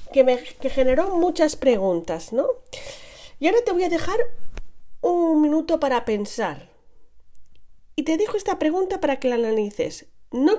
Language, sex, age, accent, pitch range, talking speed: Spanish, female, 40-59, Spanish, 200-295 Hz, 155 wpm